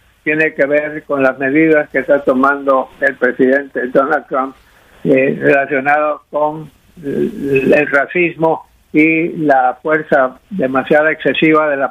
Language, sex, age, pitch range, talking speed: English, male, 60-79, 140-170 Hz, 125 wpm